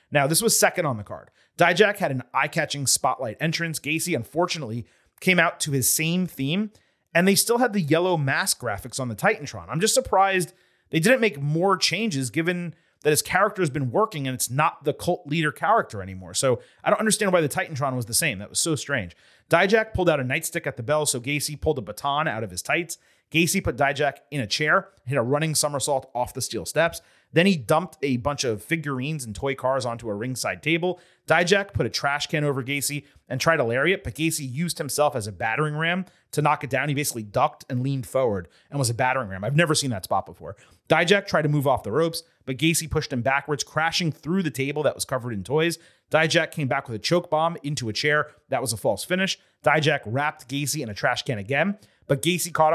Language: English